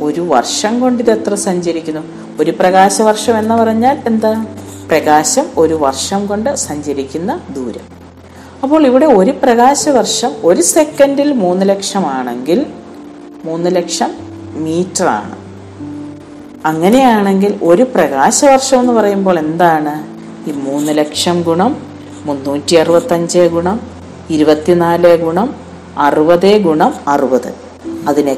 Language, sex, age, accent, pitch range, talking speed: Malayalam, female, 50-69, native, 145-230 Hz, 105 wpm